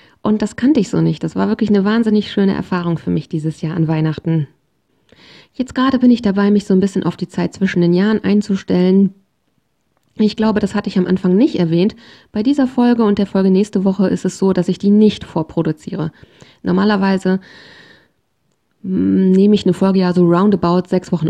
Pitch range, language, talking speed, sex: 175-205 Hz, German, 195 wpm, female